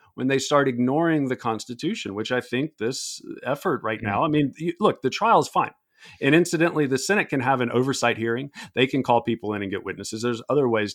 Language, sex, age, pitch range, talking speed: English, male, 40-59, 115-155 Hz, 220 wpm